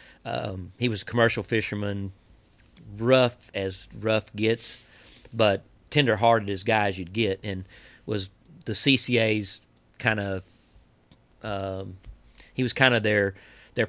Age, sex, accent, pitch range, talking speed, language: 40-59, male, American, 100-115 Hz, 125 wpm, English